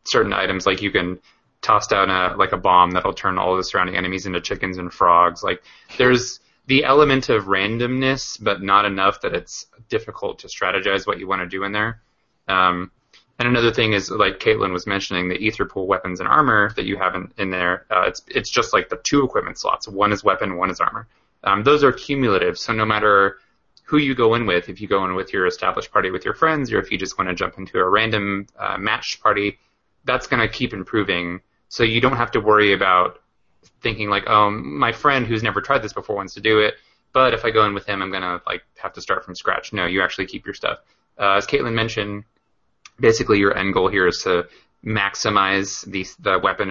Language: English